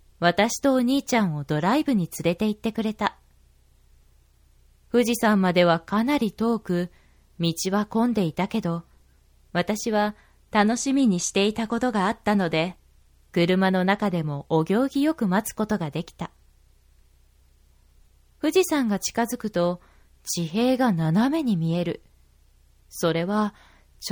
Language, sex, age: Japanese, female, 20-39